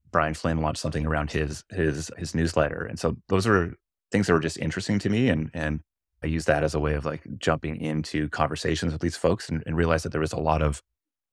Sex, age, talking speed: male, 30-49, 240 wpm